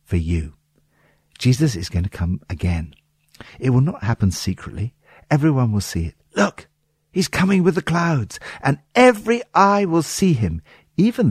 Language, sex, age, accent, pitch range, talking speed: English, male, 60-79, British, 95-145 Hz, 160 wpm